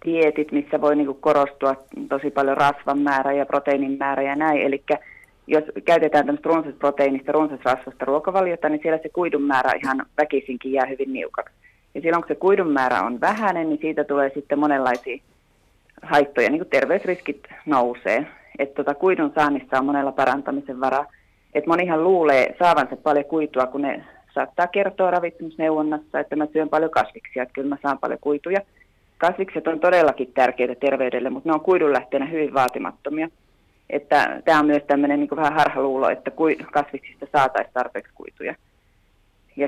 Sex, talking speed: female, 155 wpm